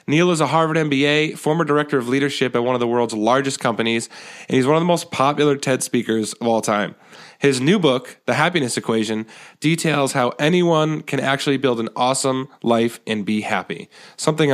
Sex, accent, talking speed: male, American, 195 wpm